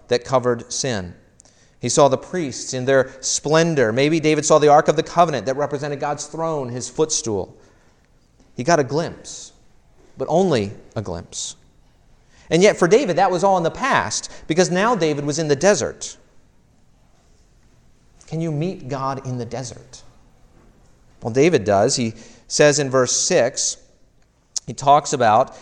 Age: 40-59